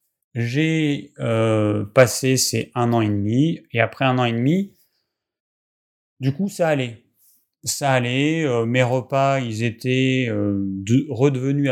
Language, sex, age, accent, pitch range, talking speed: French, male, 30-49, French, 105-130 Hz, 145 wpm